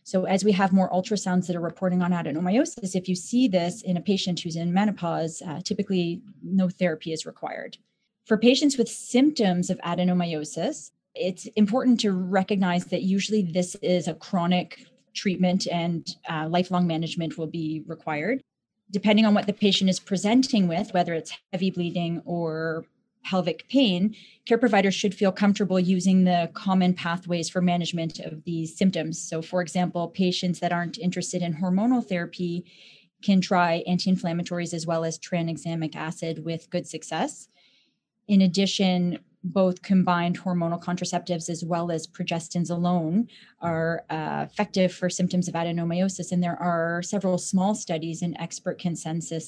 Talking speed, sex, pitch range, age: 155 wpm, female, 170-195 Hz, 30-49